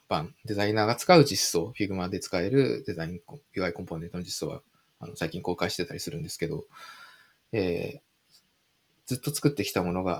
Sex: male